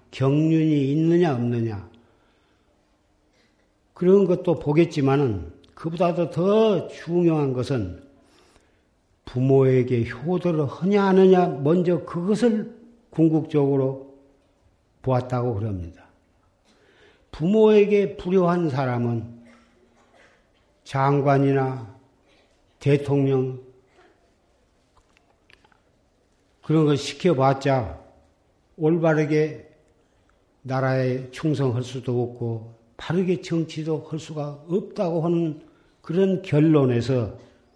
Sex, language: male, Korean